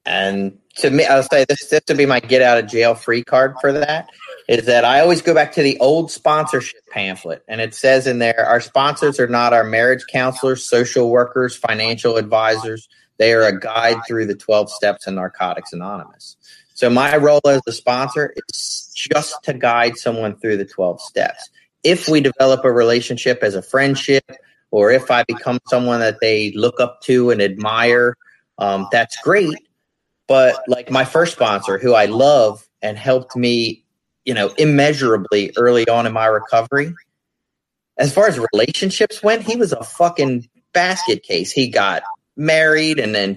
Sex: male